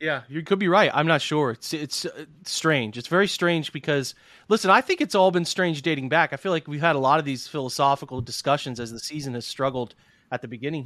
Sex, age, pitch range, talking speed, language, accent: male, 30-49, 125-160 Hz, 240 wpm, English, American